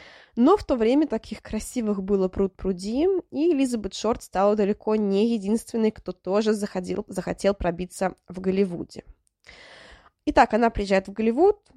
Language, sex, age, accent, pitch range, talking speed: Russian, female, 20-39, native, 190-245 Hz, 140 wpm